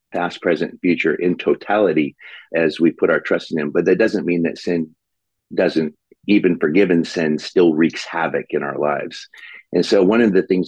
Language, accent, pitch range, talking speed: English, American, 75-120 Hz, 190 wpm